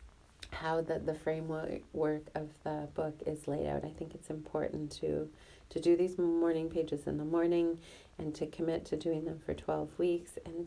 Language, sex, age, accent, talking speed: English, female, 40-59, American, 190 wpm